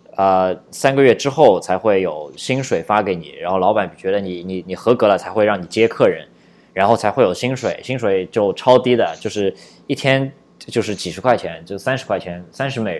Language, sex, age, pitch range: Chinese, male, 20-39, 95-125 Hz